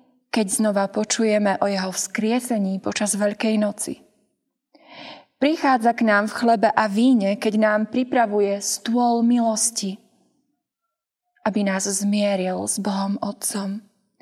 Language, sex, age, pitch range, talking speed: Slovak, female, 20-39, 200-235 Hz, 115 wpm